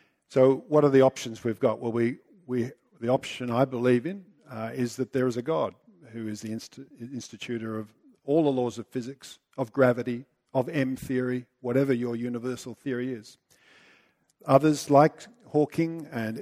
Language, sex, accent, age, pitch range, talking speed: English, male, Australian, 50-69, 115-135 Hz, 155 wpm